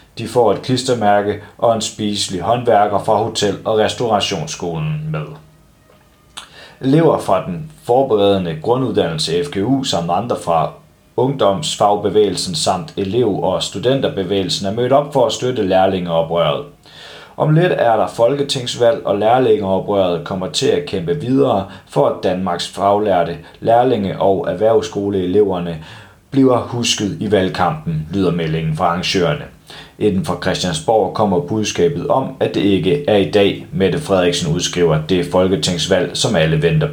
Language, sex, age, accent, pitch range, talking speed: Danish, male, 30-49, native, 95-140 Hz, 130 wpm